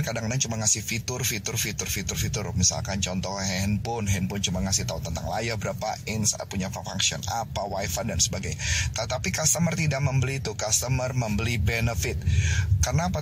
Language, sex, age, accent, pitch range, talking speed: Indonesian, male, 20-39, native, 95-120 Hz, 140 wpm